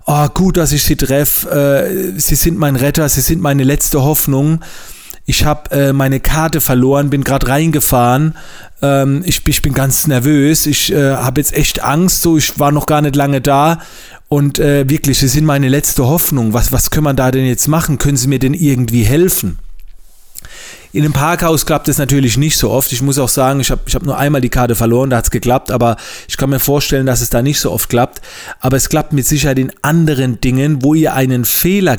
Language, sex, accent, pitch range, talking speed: German, male, German, 130-155 Hz, 210 wpm